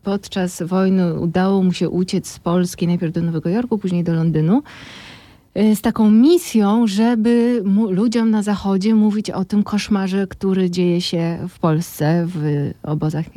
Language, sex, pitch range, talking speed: Polish, female, 180-225 Hz, 155 wpm